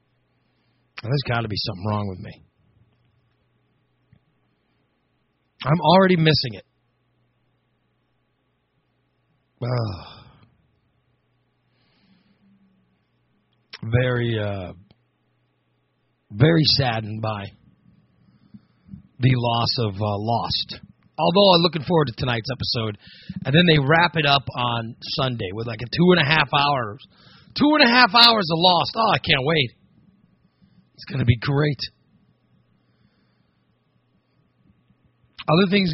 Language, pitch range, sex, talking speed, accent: English, 105-165 Hz, male, 105 wpm, American